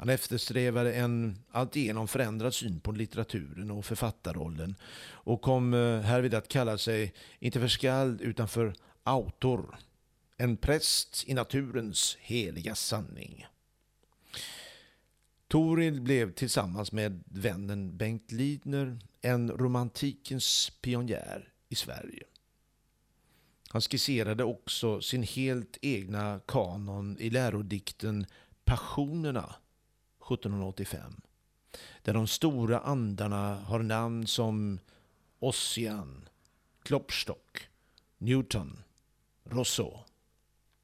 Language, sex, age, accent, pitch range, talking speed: Swedish, male, 50-69, native, 105-125 Hz, 90 wpm